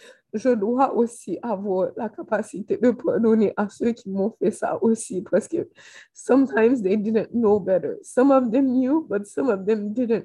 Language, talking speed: French, 180 wpm